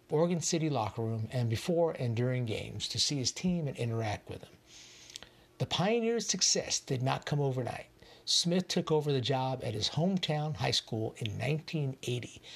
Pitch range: 115-160 Hz